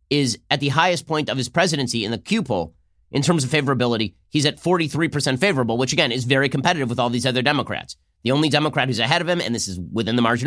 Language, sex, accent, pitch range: English, male, American, 115-150 Hz